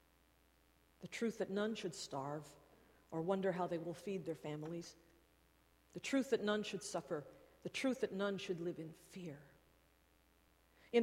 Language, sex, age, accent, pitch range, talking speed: English, female, 50-69, American, 185-260 Hz, 160 wpm